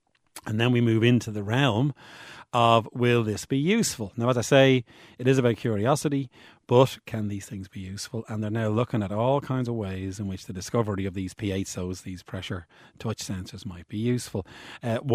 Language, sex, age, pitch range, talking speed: English, male, 40-59, 95-125 Hz, 200 wpm